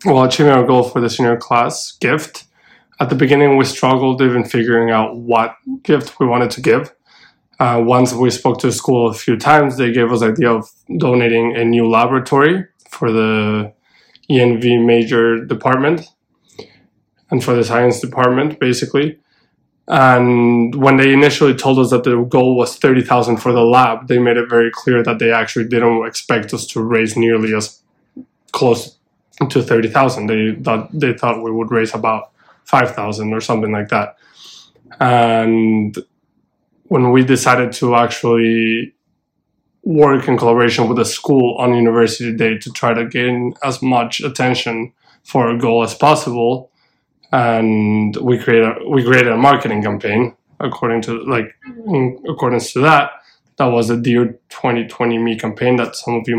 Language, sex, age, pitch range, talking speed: English, male, 20-39, 115-130 Hz, 160 wpm